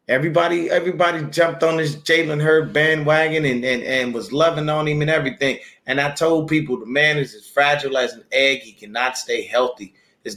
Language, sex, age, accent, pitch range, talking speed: English, male, 30-49, American, 125-150 Hz, 195 wpm